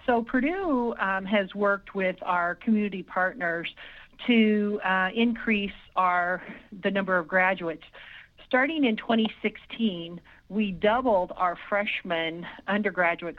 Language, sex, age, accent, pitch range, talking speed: English, female, 50-69, American, 175-205 Hz, 110 wpm